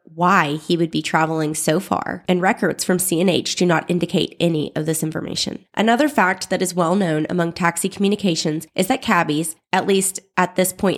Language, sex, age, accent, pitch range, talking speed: English, female, 20-39, American, 160-190 Hz, 190 wpm